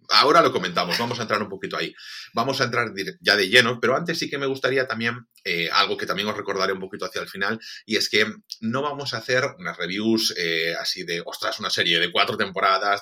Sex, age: male, 30-49